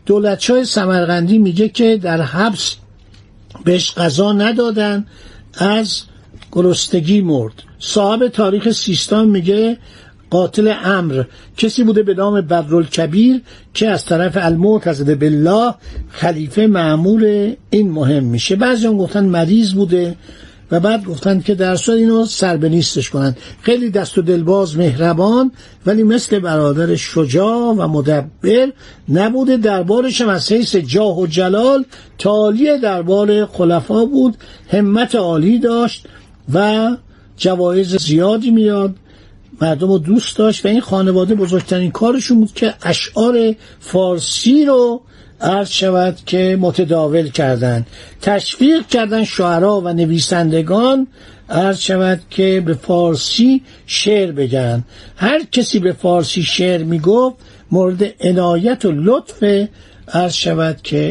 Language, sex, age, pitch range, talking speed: Persian, male, 60-79, 165-215 Hz, 120 wpm